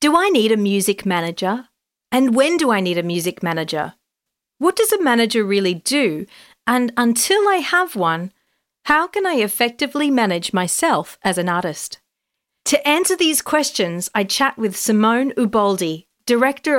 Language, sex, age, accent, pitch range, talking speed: English, female, 40-59, Australian, 185-255 Hz, 155 wpm